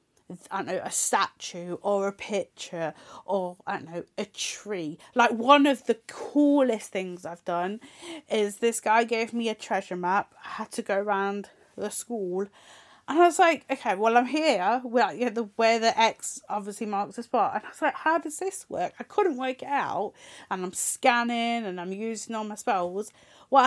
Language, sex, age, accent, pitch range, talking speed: English, female, 30-49, British, 205-265 Hz, 200 wpm